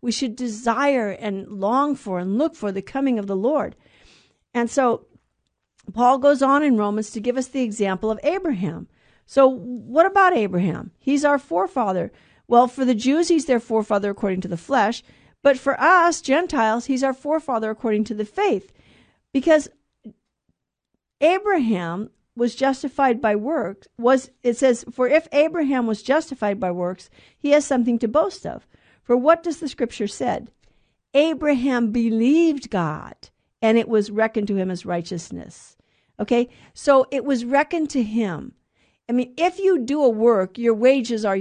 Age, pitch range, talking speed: 50-69, 215-275 Hz, 165 wpm